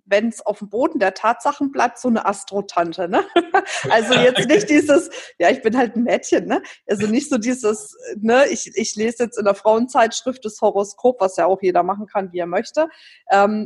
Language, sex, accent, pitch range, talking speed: German, female, German, 200-245 Hz, 205 wpm